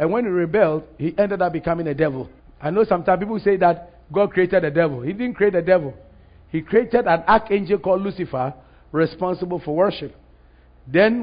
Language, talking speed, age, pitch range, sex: English, 185 wpm, 50-69, 175-240 Hz, male